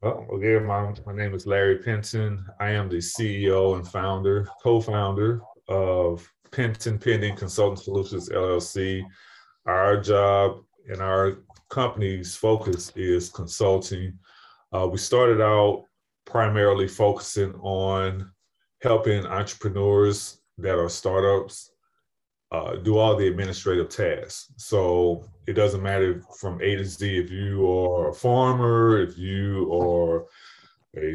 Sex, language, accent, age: male, English, American, 30-49